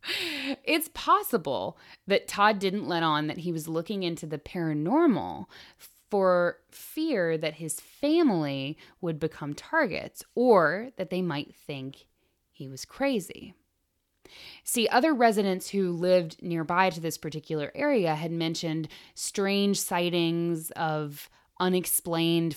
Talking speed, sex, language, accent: 120 wpm, female, English, American